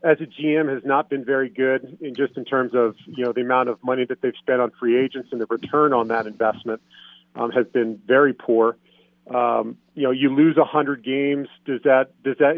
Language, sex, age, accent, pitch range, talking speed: English, male, 40-59, American, 115-135 Hz, 230 wpm